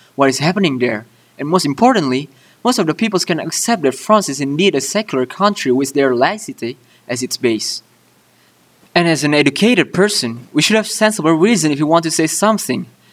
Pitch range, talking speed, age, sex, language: 125-175 Hz, 190 wpm, 20-39, male, English